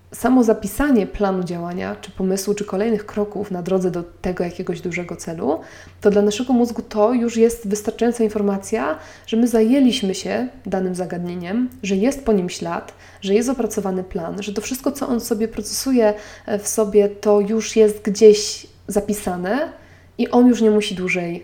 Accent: native